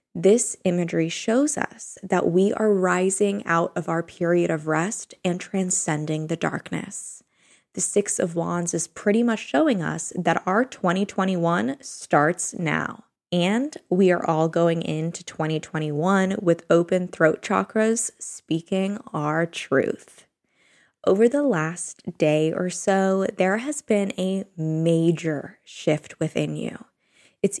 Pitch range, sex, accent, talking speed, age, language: 170-230 Hz, female, American, 135 wpm, 10-29, English